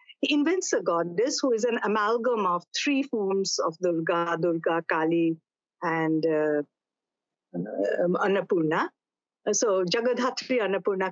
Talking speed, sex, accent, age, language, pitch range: 115 wpm, female, Indian, 50-69, English, 205-335 Hz